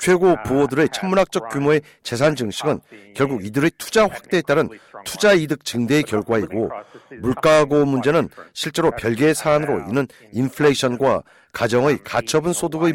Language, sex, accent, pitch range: Korean, male, native, 140-180 Hz